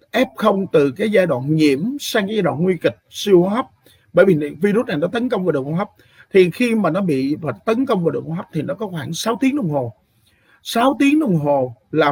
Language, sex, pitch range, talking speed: Vietnamese, male, 145-215 Hz, 250 wpm